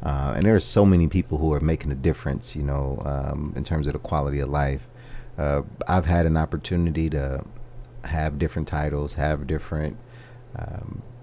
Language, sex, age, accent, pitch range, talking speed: English, male, 40-59, American, 75-90 Hz, 180 wpm